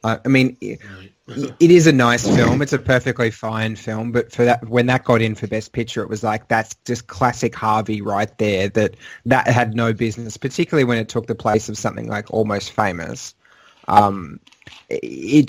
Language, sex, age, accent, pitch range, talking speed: English, male, 20-39, Australian, 105-120 Hz, 195 wpm